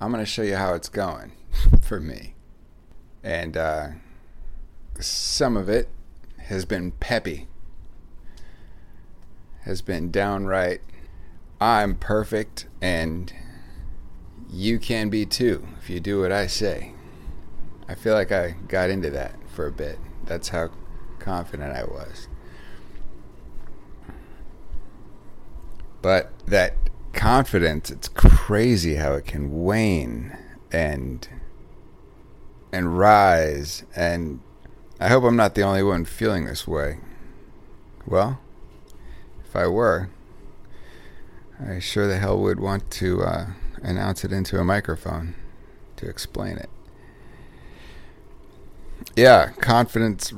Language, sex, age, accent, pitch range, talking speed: English, male, 40-59, American, 80-100 Hz, 110 wpm